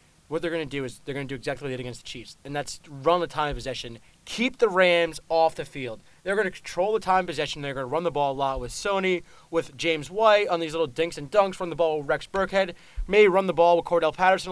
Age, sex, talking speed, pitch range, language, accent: 20-39, male, 290 wpm, 140-175 Hz, English, American